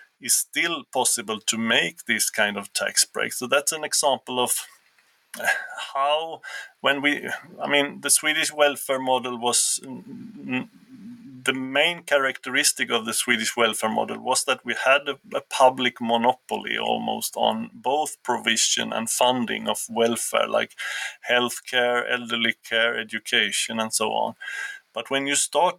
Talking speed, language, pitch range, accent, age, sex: 140 wpm, English, 115-145 Hz, Swedish, 30-49, male